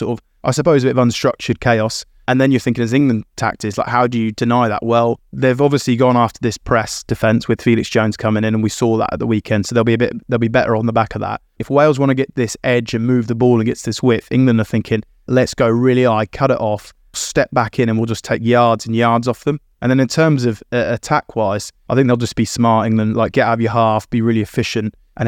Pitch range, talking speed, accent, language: 110-120 Hz, 275 wpm, British, English